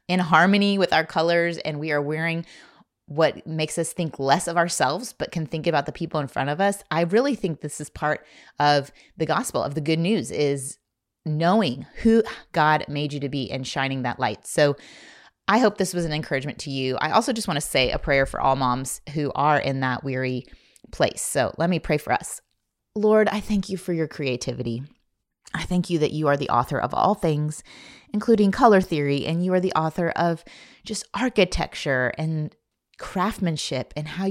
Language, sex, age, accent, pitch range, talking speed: English, female, 30-49, American, 140-175 Hz, 205 wpm